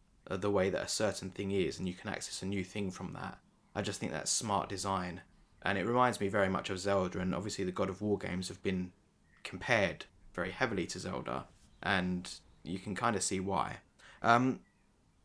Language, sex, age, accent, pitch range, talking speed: English, male, 20-39, British, 90-105 Hz, 205 wpm